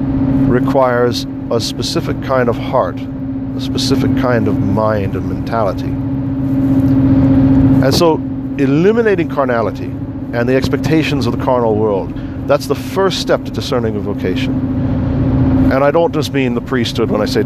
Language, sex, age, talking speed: English, male, 50-69, 140 wpm